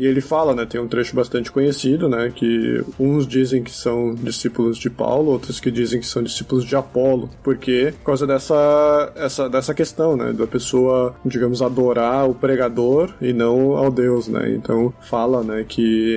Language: Portuguese